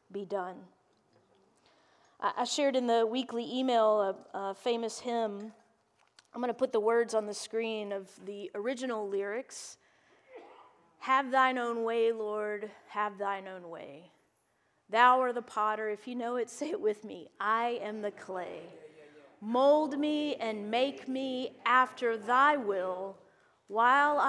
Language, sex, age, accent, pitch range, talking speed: English, female, 40-59, American, 215-275 Hz, 145 wpm